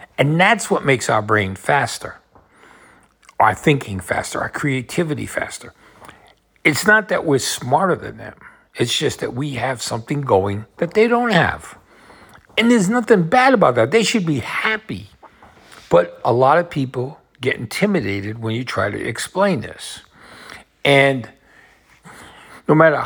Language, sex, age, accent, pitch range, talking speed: English, male, 60-79, American, 110-170 Hz, 150 wpm